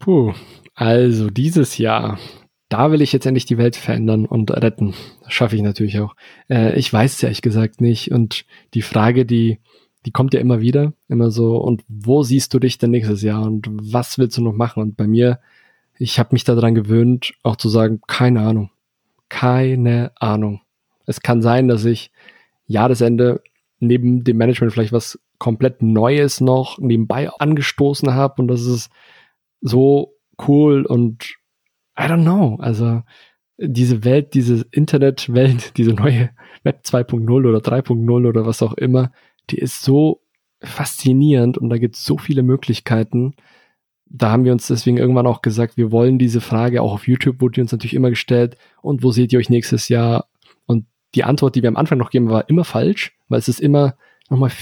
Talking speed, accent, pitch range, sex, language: 180 wpm, German, 115-130 Hz, male, German